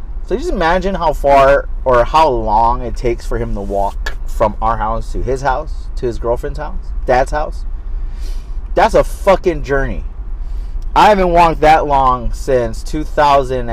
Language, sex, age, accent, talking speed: English, male, 30-49, American, 160 wpm